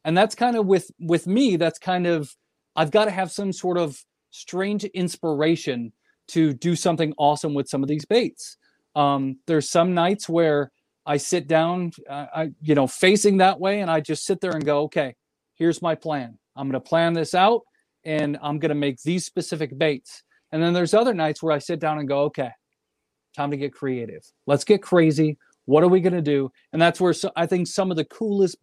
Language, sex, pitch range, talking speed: English, male, 150-195 Hz, 215 wpm